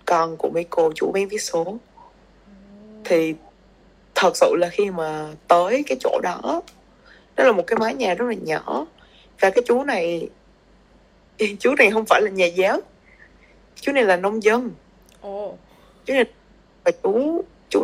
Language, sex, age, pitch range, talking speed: Vietnamese, female, 20-39, 170-260 Hz, 155 wpm